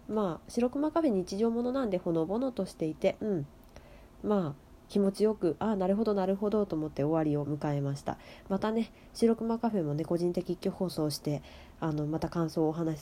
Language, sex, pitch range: Japanese, female, 155-215 Hz